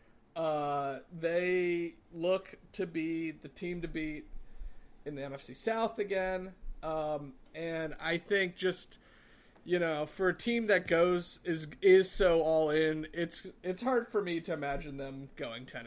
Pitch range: 145-175 Hz